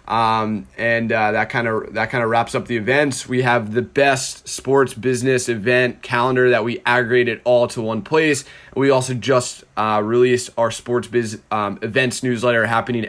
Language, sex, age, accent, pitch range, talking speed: English, male, 20-39, American, 115-130 Hz, 185 wpm